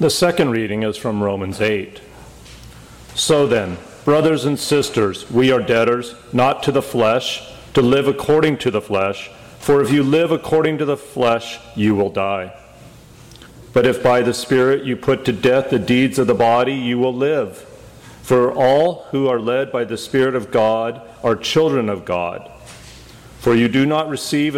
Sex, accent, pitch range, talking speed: male, American, 115-135 Hz, 175 wpm